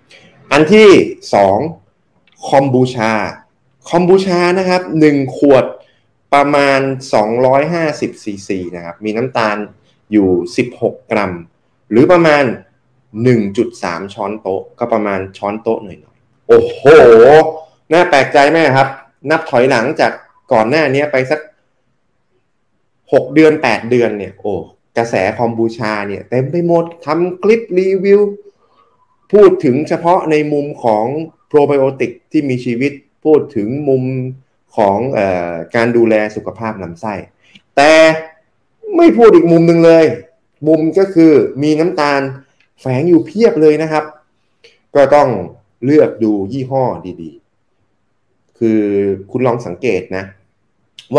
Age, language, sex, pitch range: 20-39, Thai, male, 110-160 Hz